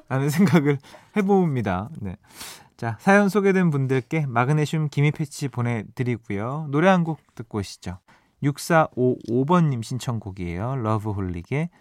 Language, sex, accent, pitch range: Korean, male, native, 110-165 Hz